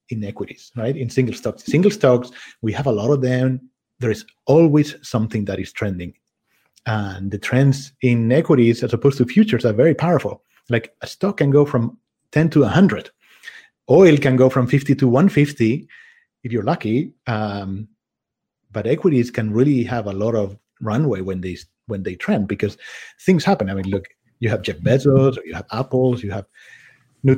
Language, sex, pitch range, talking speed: English, male, 105-135 Hz, 185 wpm